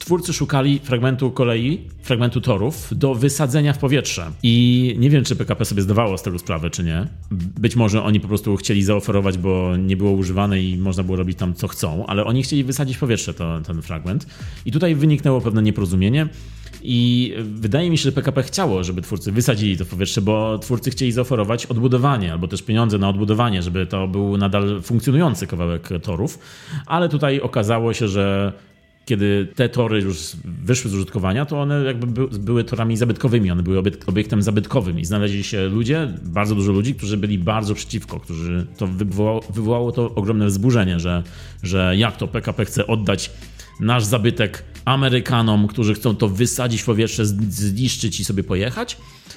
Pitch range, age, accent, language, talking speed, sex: 95-125 Hz, 30-49, native, Polish, 175 wpm, male